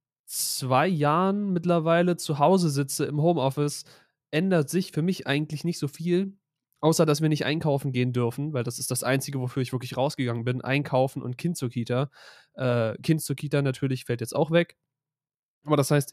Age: 20-39